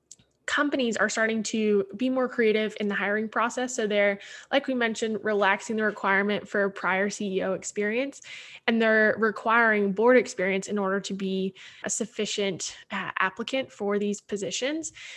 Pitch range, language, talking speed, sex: 205-245 Hz, English, 155 wpm, female